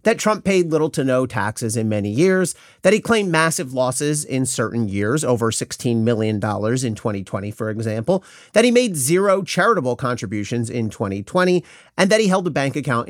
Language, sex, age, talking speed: English, male, 40-59, 185 wpm